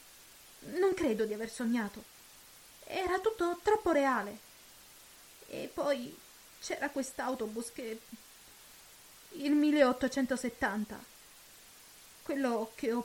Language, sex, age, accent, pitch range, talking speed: Italian, female, 30-49, native, 225-285 Hz, 85 wpm